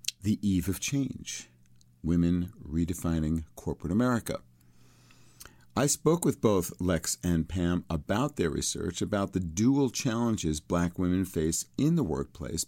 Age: 50-69